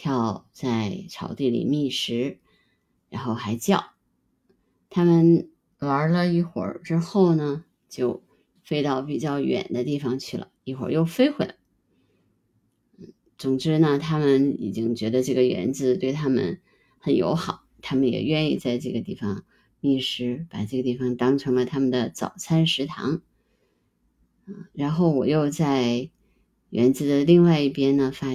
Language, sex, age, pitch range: Chinese, female, 20-39, 130-170 Hz